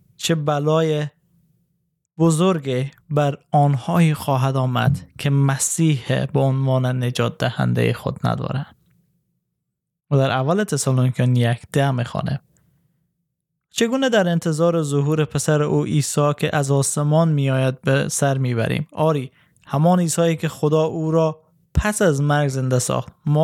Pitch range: 140-165 Hz